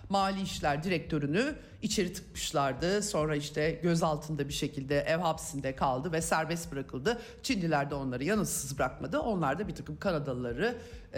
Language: Turkish